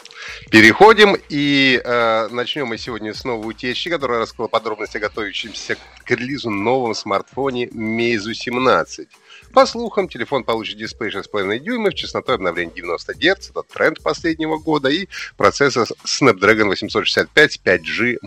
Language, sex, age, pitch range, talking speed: Russian, male, 30-49, 120-170 Hz, 130 wpm